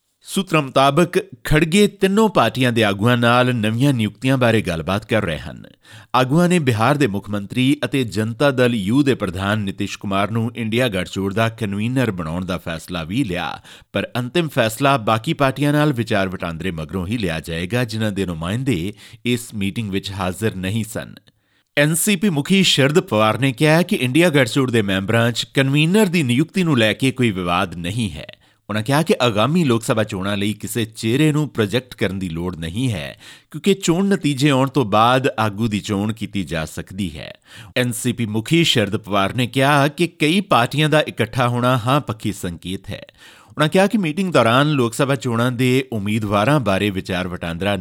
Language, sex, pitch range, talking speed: Punjabi, male, 100-140 Hz, 165 wpm